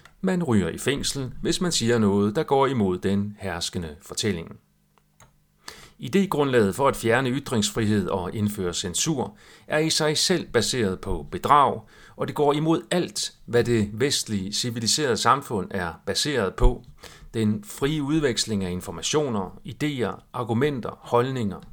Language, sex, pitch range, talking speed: Danish, male, 100-150 Hz, 140 wpm